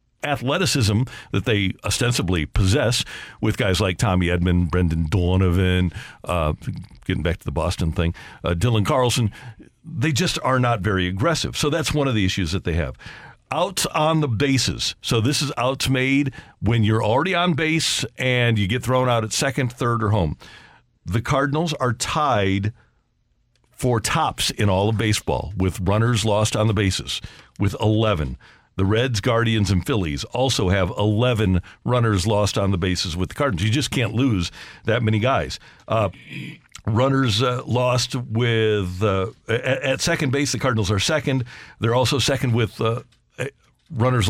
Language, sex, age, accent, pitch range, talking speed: English, male, 50-69, American, 100-130 Hz, 165 wpm